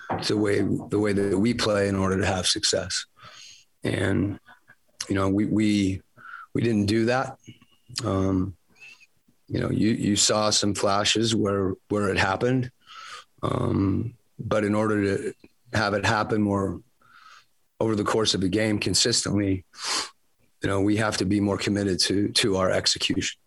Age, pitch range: 30-49, 100-110 Hz